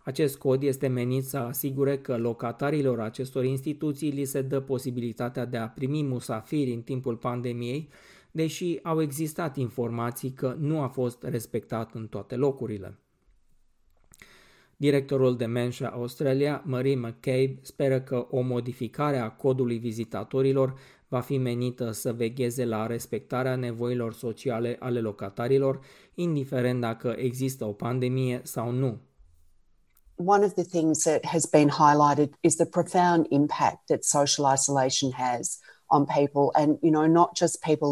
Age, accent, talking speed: 20-39, native, 140 wpm